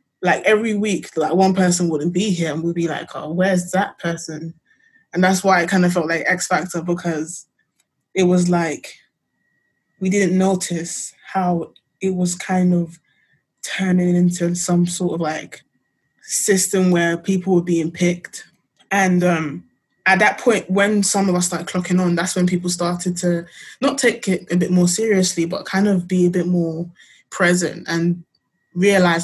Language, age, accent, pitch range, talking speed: English, 20-39, British, 175-190 Hz, 175 wpm